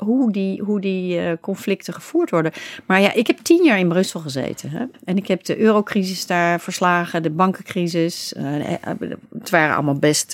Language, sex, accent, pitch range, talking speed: Dutch, female, Dutch, 170-240 Hz, 180 wpm